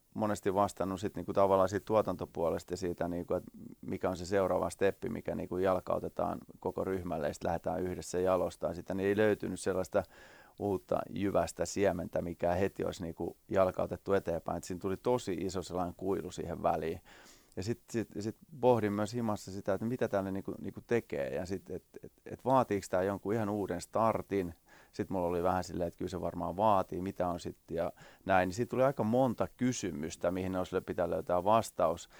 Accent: native